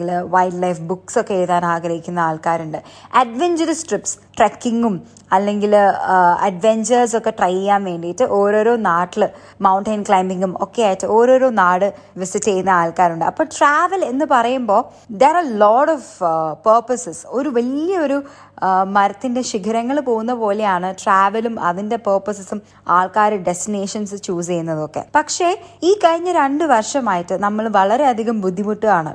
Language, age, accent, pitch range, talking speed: Malayalam, 20-39, native, 185-240 Hz, 115 wpm